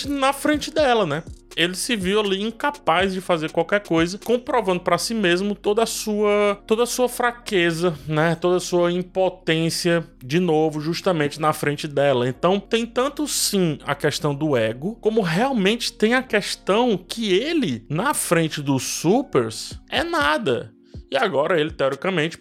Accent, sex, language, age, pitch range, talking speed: Brazilian, male, Portuguese, 20-39, 155-220 Hz, 160 wpm